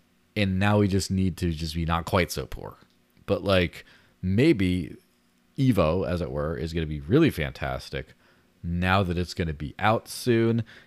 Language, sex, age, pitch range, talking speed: English, male, 30-49, 80-105 Hz, 180 wpm